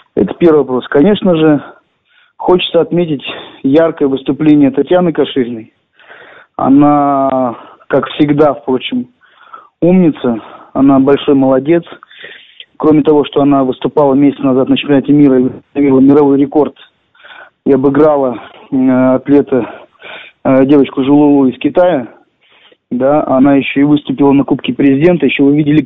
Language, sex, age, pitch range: Russian, male, 20-39, 135-155 Hz